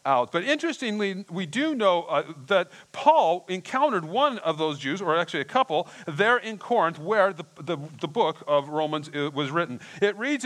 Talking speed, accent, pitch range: 170 wpm, American, 135-205 Hz